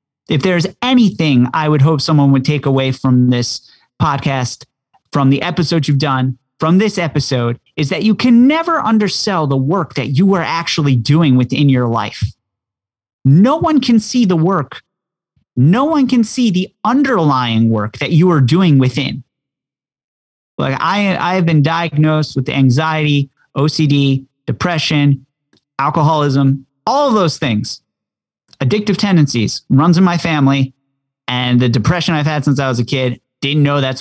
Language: English